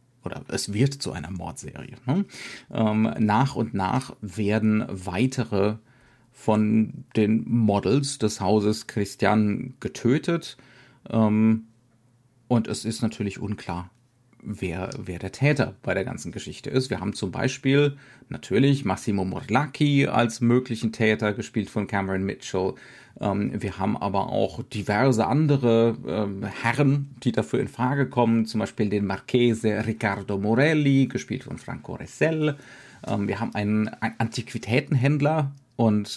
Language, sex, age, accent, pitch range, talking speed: German, male, 40-59, German, 110-130 Hz, 130 wpm